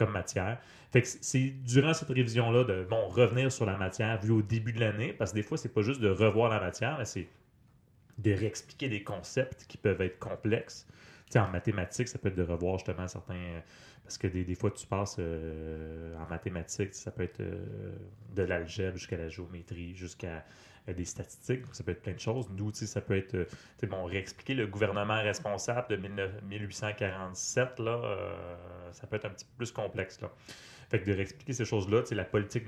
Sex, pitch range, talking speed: male, 95-115 Hz, 205 wpm